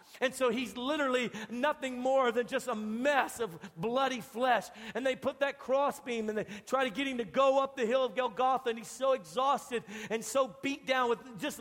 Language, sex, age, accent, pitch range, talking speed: English, male, 50-69, American, 230-265 Hz, 215 wpm